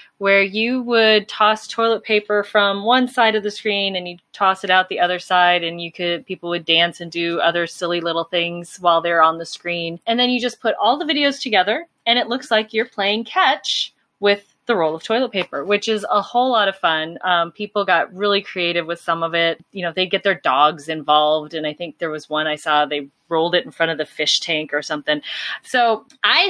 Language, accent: English, American